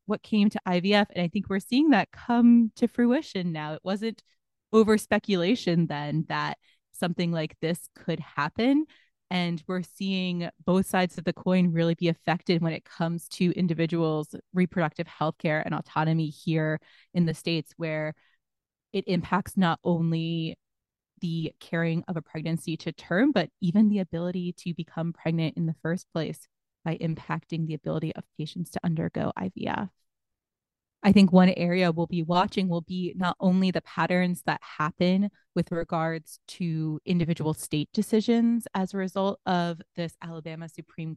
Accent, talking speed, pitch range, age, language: American, 160 wpm, 160-190 Hz, 20-39, English